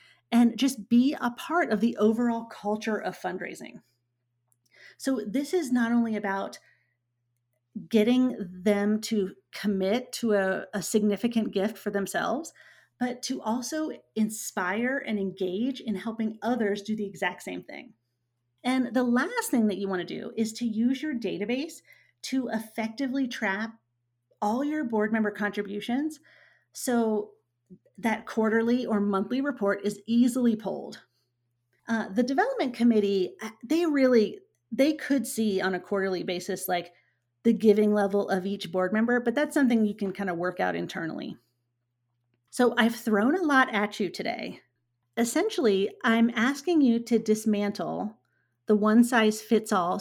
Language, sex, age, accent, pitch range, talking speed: English, female, 30-49, American, 190-240 Hz, 145 wpm